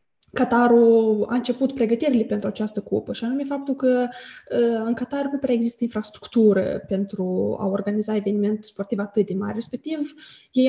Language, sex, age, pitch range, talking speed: Romanian, female, 20-39, 205-245 Hz, 150 wpm